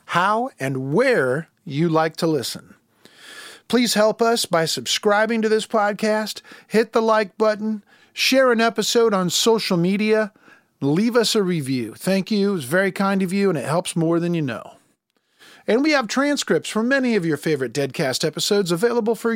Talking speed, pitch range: 175 wpm, 175-225 Hz